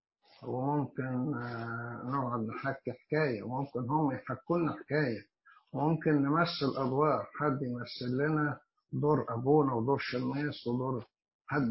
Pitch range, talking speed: 120-145 Hz, 130 wpm